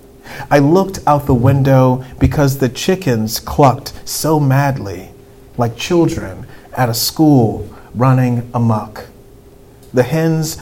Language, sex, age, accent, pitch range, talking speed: English, male, 40-59, American, 115-135 Hz, 115 wpm